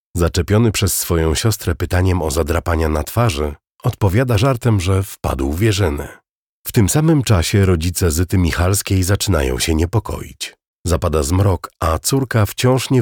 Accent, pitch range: native, 80-105 Hz